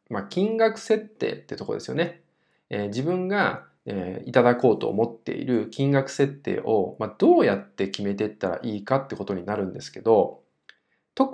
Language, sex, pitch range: Japanese, male, 100-170 Hz